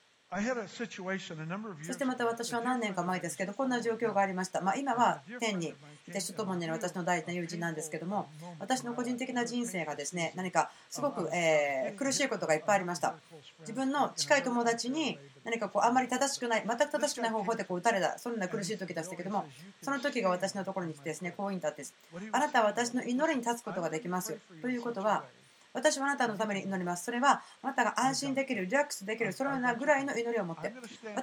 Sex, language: female, Japanese